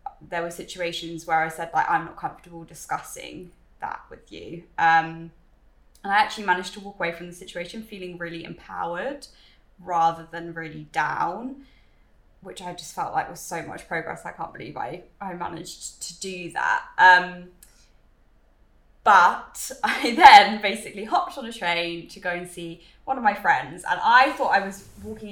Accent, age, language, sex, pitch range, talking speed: British, 10-29, English, female, 175-205 Hz, 175 wpm